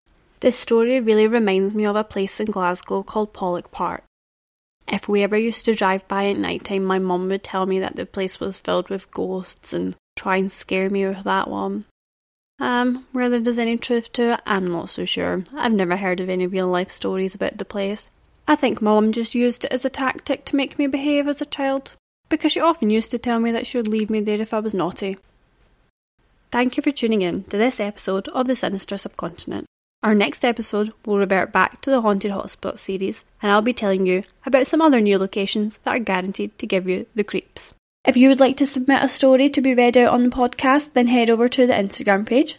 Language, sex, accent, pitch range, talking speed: English, female, British, 195-255 Hz, 225 wpm